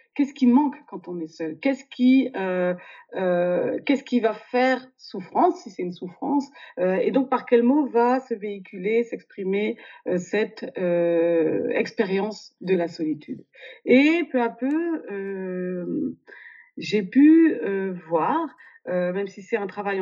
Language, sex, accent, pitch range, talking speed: French, female, French, 185-250 Hz, 155 wpm